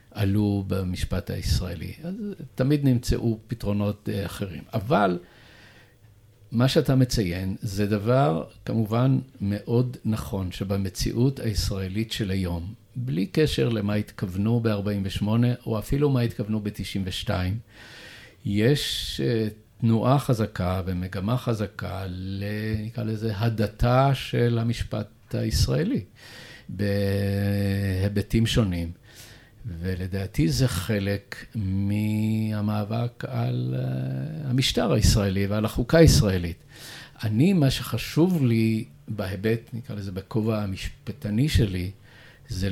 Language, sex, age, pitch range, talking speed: Hebrew, male, 50-69, 100-120 Hz, 90 wpm